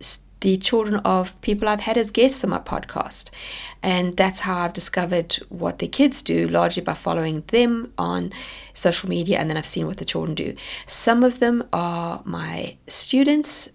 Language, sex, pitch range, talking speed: English, female, 165-210 Hz, 180 wpm